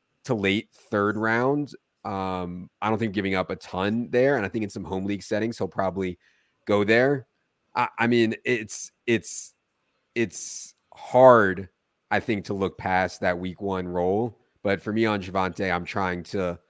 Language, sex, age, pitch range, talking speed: English, male, 30-49, 90-110 Hz, 175 wpm